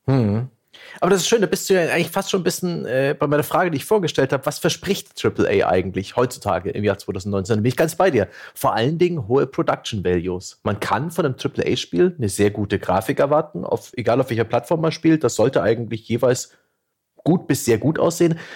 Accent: German